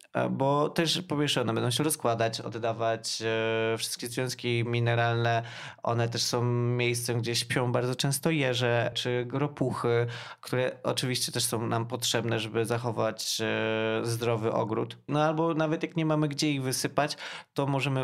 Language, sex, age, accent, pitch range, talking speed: Polish, male, 20-39, native, 115-130 Hz, 150 wpm